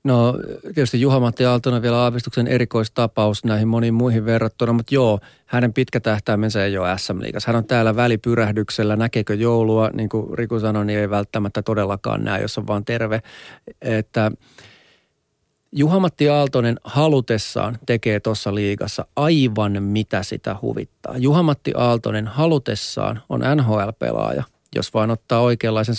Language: Finnish